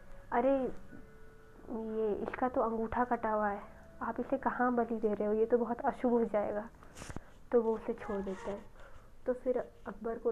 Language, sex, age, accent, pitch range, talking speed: Hindi, female, 20-39, native, 200-230 Hz, 180 wpm